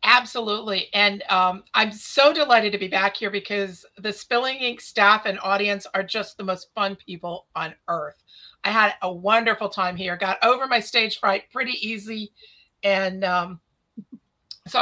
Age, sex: 40-59, female